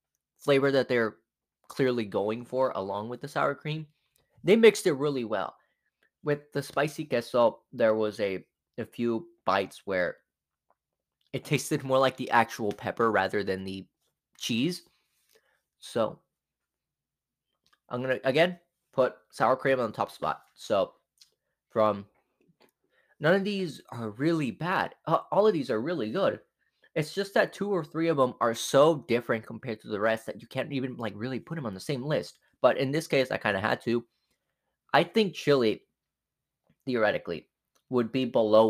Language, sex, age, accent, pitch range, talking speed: English, male, 20-39, American, 110-155 Hz, 165 wpm